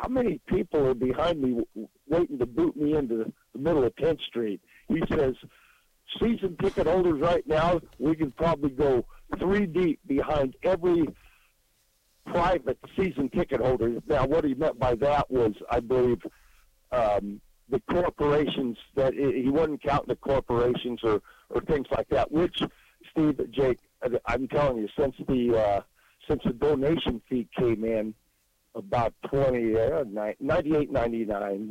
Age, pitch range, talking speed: 50-69, 120-170 Hz, 155 wpm